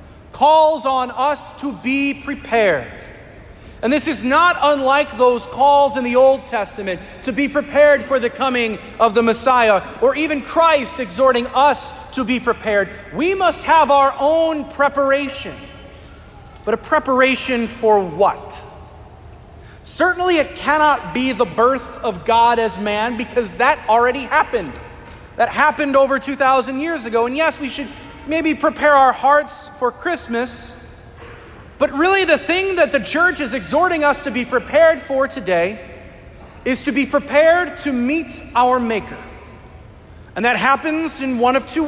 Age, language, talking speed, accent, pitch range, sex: 40-59, English, 150 wpm, American, 230-290 Hz, male